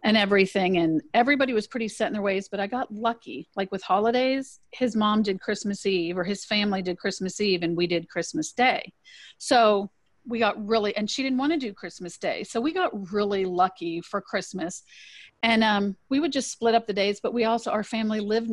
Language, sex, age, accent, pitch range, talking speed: English, female, 40-59, American, 185-235 Hz, 215 wpm